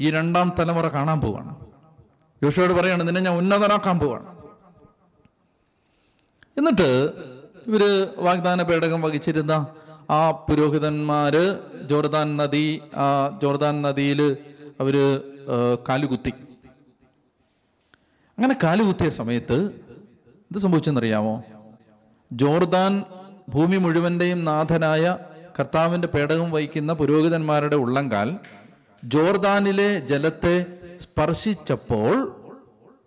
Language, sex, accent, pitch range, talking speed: Malayalam, male, native, 140-175 Hz, 75 wpm